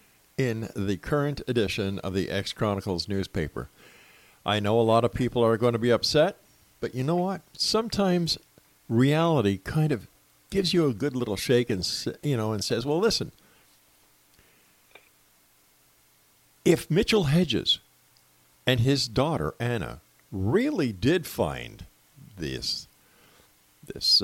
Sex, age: male, 50-69